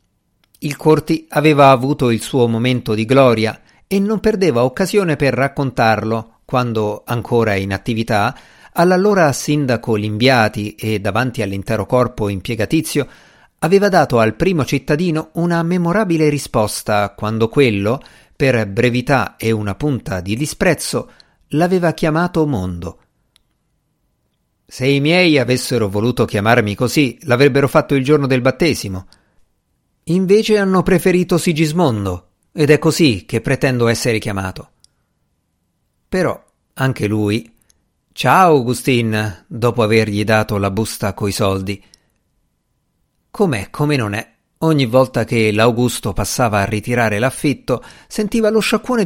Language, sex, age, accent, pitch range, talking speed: Italian, male, 50-69, native, 110-150 Hz, 120 wpm